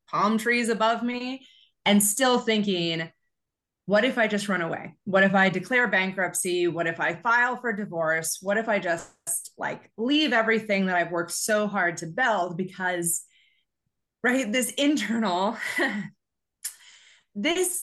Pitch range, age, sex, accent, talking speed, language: 180-235 Hz, 20-39, female, American, 145 wpm, English